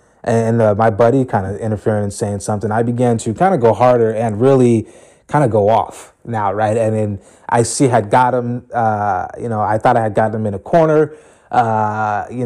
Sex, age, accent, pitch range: male, 20-39, American, 105-125 Hz